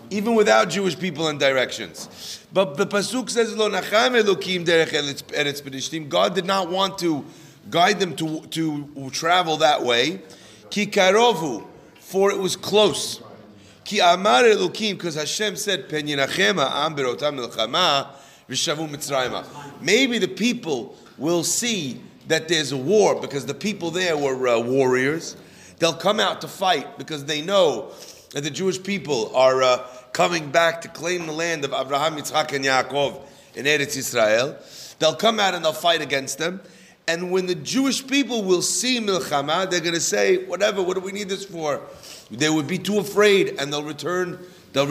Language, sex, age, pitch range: English, male, 30-49, 145-195 Hz